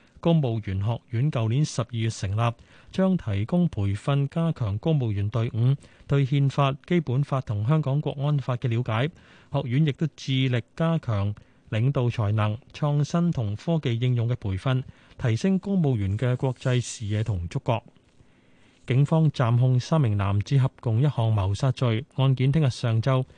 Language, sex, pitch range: Chinese, male, 115-145 Hz